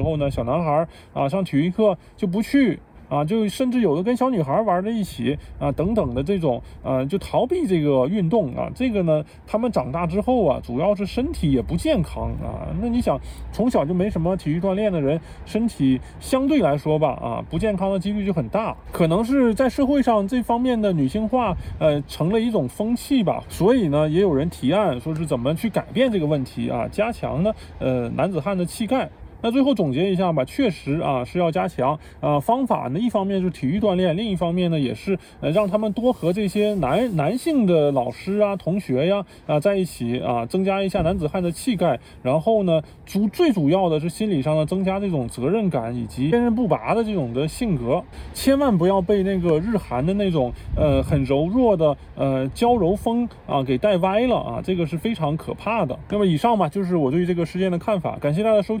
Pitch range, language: 155-220 Hz, Chinese